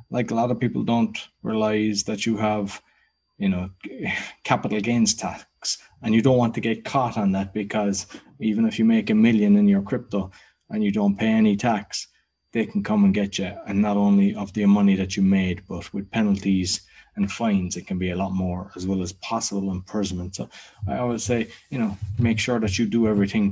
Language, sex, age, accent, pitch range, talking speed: English, male, 20-39, Irish, 100-125 Hz, 210 wpm